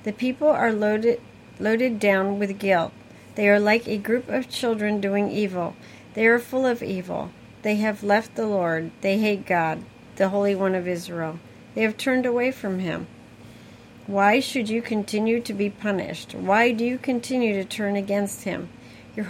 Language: English